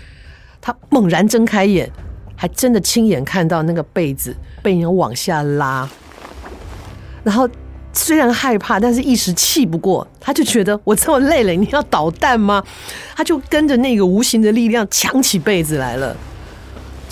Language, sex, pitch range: Chinese, female, 135-220 Hz